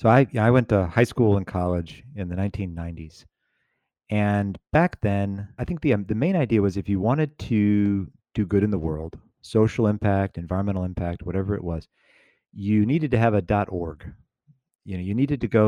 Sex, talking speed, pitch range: male, 195 wpm, 90-110 Hz